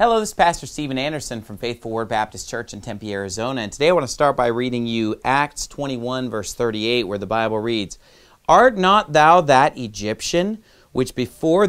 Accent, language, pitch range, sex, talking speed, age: American, English, 115-165 Hz, male, 195 wpm, 40-59